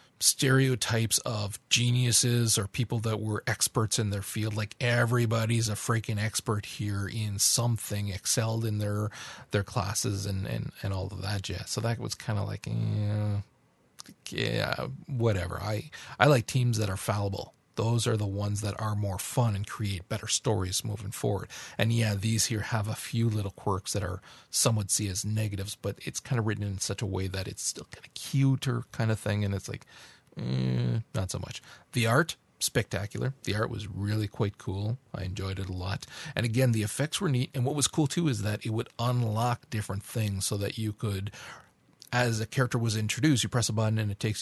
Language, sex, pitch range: English, male, 100-120 Hz